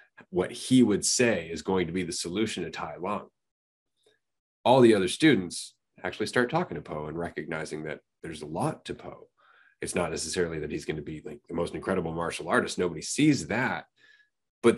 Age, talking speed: 30-49, 195 wpm